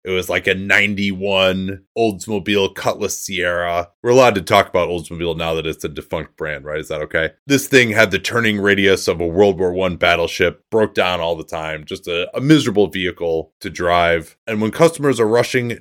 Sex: male